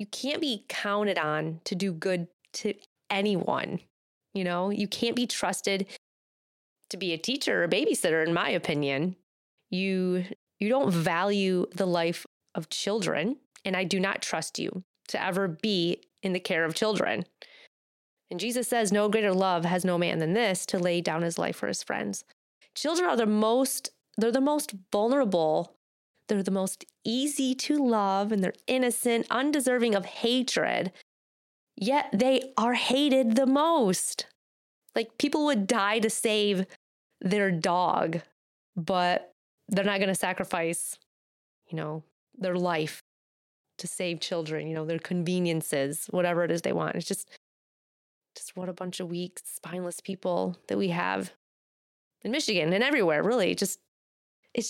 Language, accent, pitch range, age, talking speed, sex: English, American, 175-235 Hz, 30-49, 155 wpm, female